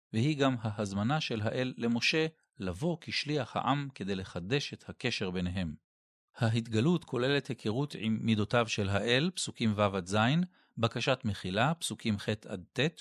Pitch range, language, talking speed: 105-130 Hz, Hebrew, 125 wpm